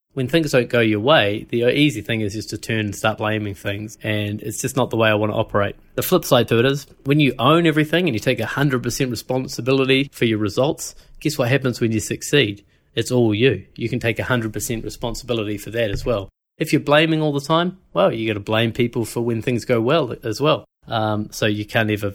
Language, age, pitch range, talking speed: English, 20-39, 105-125 Hz, 245 wpm